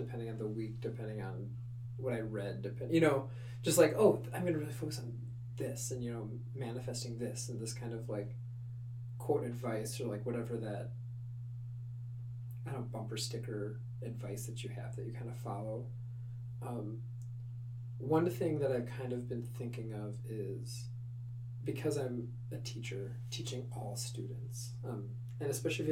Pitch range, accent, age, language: 120-130 Hz, American, 30-49, English